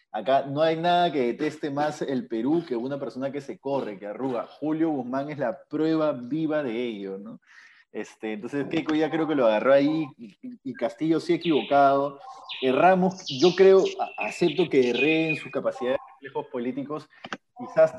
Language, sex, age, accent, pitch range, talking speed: Spanish, male, 30-49, Argentinian, 130-170 Hz, 170 wpm